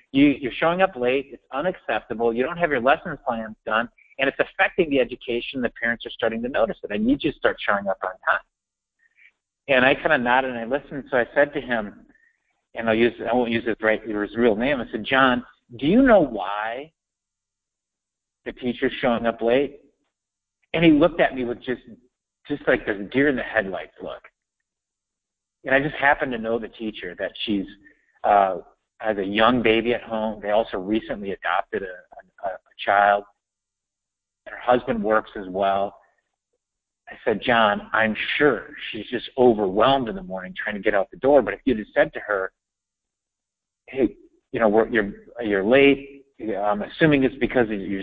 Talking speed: 185 wpm